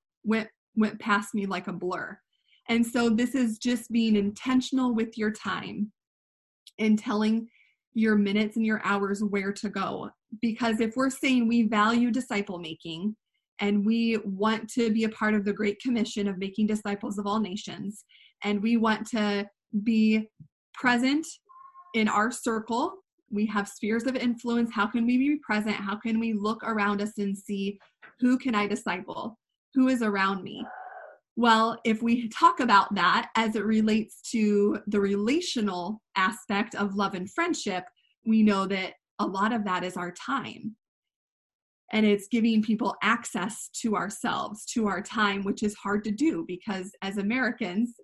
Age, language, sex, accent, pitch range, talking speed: 20-39, English, female, American, 205-235 Hz, 165 wpm